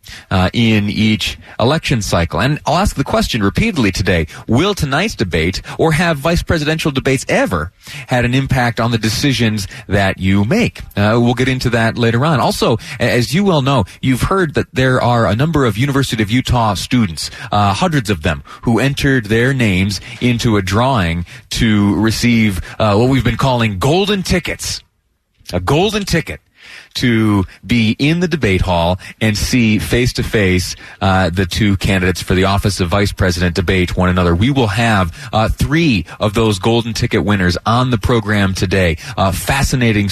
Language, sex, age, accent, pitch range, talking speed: English, male, 30-49, American, 95-125 Hz, 170 wpm